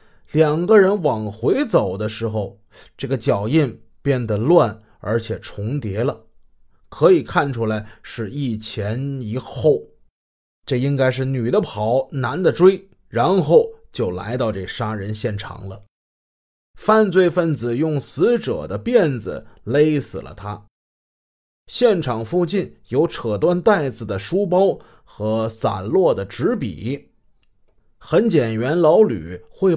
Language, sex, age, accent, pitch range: Chinese, male, 30-49, native, 105-160 Hz